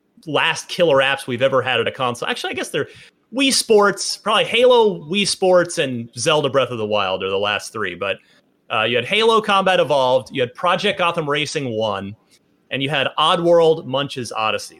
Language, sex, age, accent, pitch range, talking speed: English, male, 30-49, American, 130-195 Hz, 195 wpm